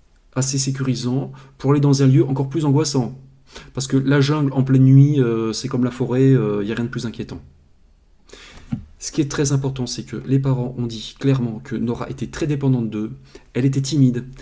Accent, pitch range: French, 120-145 Hz